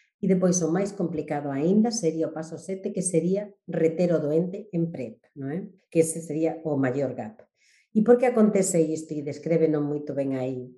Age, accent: 40-59, Spanish